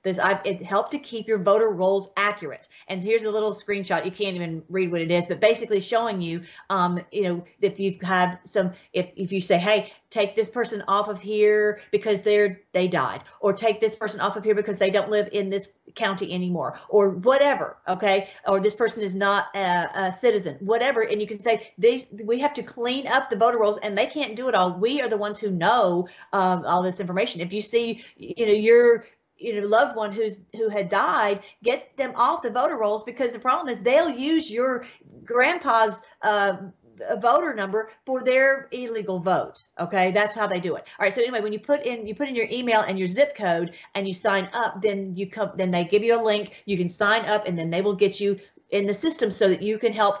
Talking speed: 230 wpm